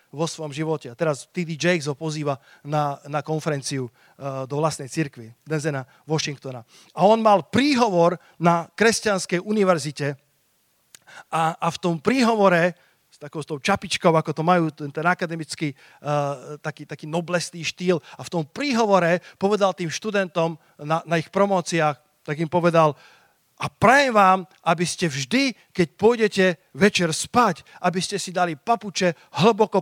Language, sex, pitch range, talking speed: Slovak, male, 155-200 Hz, 150 wpm